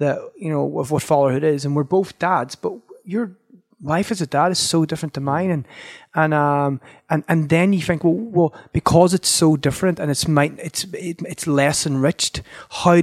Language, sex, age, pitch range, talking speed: English, male, 30-49, 130-165 Hz, 205 wpm